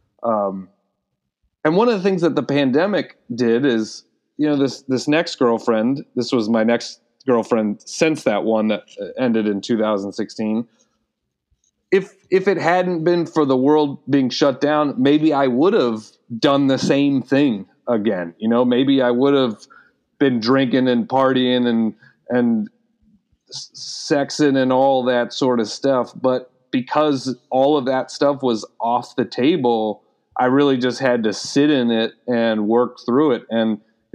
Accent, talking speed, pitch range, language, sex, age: American, 160 wpm, 115-145 Hz, English, male, 30-49